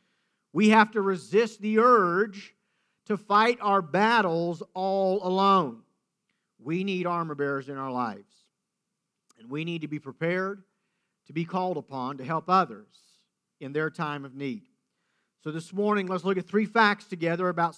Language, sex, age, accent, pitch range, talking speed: English, male, 50-69, American, 170-210 Hz, 160 wpm